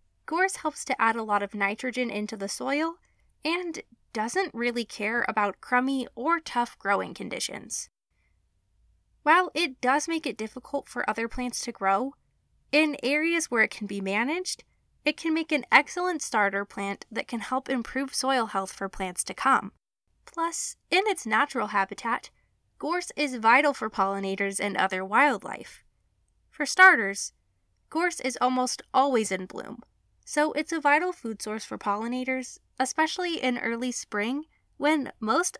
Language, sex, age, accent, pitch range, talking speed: English, female, 20-39, American, 215-300 Hz, 155 wpm